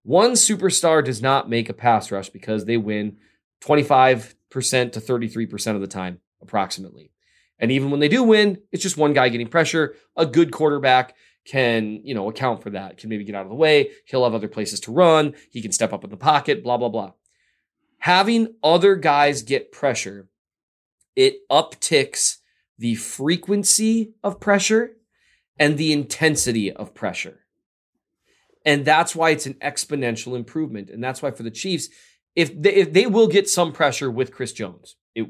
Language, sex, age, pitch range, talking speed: English, male, 20-39, 115-170 Hz, 175 wpm